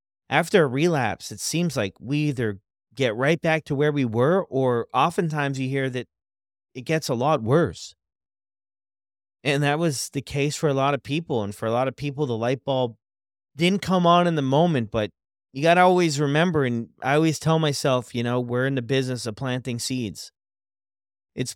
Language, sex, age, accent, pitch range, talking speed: English, male, 30-49, American, 110-140 Hz, 200 wpm